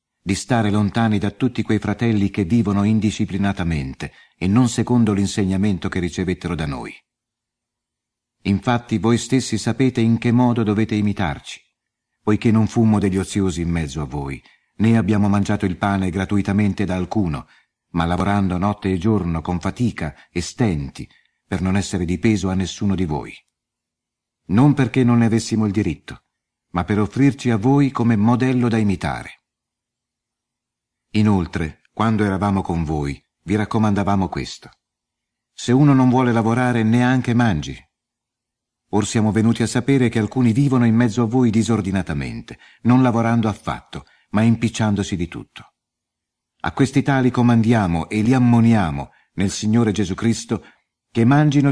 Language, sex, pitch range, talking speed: Italian, male, 95-120 Hz, 145 wpm